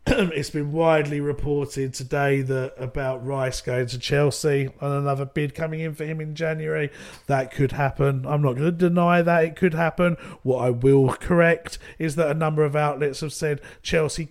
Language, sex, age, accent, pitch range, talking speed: English, male, 40-59, British, 145-170 Hz, 190 wpm